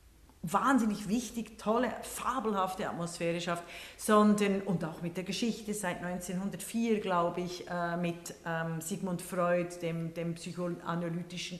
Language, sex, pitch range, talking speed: German, female, 180-235 Hz, 125 wpm